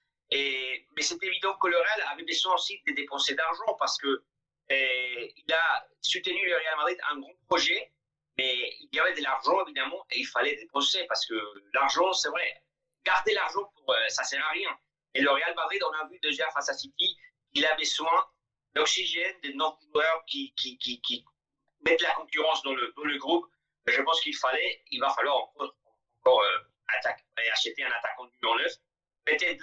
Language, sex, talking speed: French, male, 190 wpm